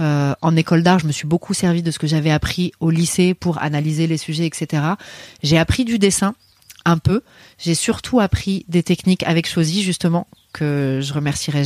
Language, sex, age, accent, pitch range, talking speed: French, female, 30-49, French, 155-185 Hz, 200 wpm